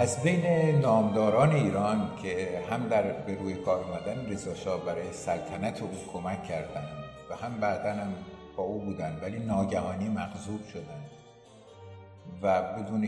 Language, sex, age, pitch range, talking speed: English, male, 50-69, 85-115 Hz, 135 wpm